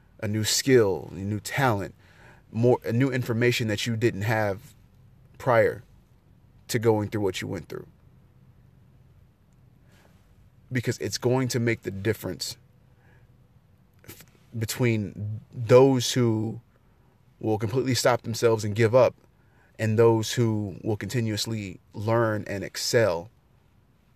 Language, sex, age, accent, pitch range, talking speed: English, male, 30-49, American, 105-125 Hz, 115 wpm